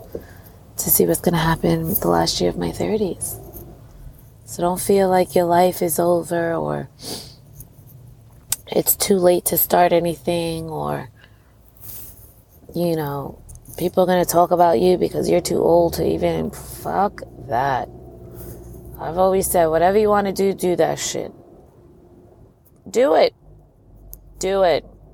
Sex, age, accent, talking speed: female, 20-39, American, 145 wpm